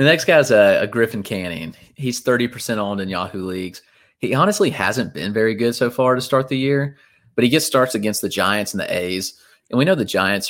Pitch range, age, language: 100-125 Hz, 30-49, English